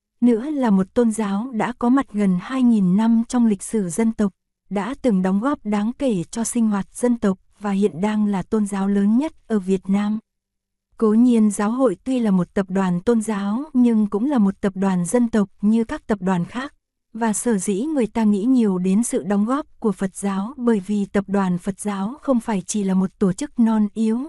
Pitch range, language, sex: 200-240 Hz, Korean, female